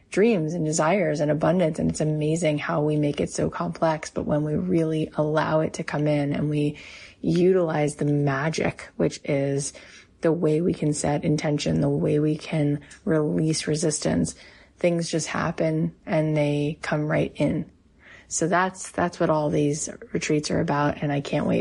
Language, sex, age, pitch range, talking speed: English, female, 20-39, 150-175 Hz, 175 wpm